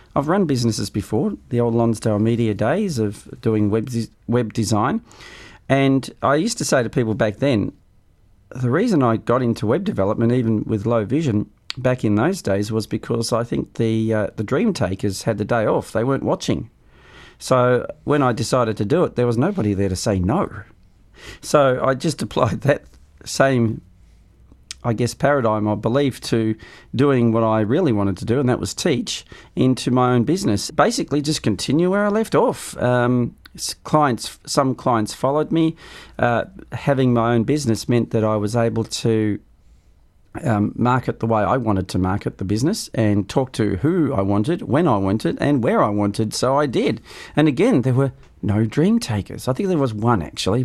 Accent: Australian